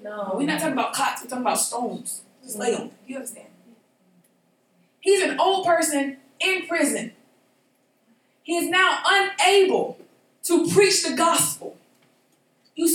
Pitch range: 245-335 Hz